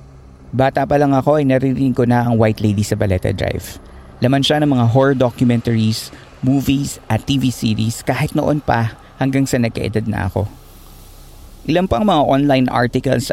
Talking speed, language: 160 wpm, Filipino